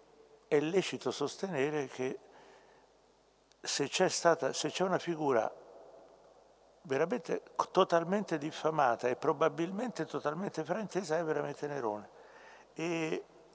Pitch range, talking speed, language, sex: 125-175 Hz, 95 wpm, Italian, male